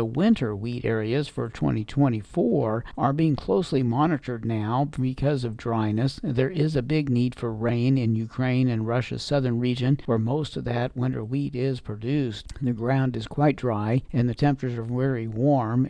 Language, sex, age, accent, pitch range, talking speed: English, male, 60-79, American, 115-135 Hz, 175 wpm